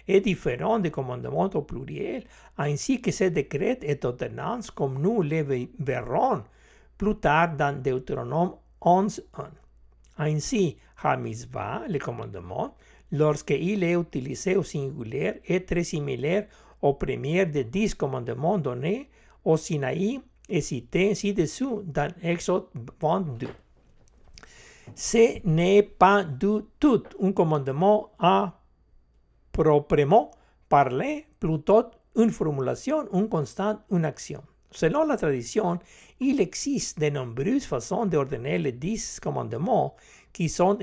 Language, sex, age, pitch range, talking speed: French, male, 60-79, 145-210 Hz, 120 wpm